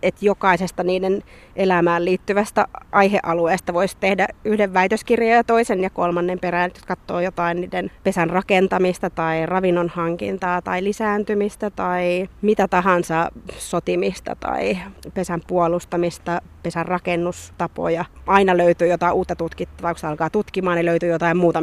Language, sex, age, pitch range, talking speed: Finnish, female, 30-49, 170-195 Hz, 130 wpm